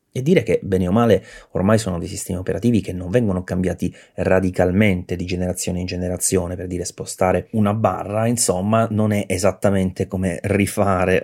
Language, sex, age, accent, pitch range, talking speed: Italian, male, 30-49, native, 95-125 Hz, 165 wpm